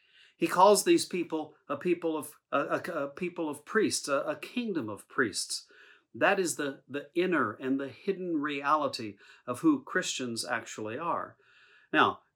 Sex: male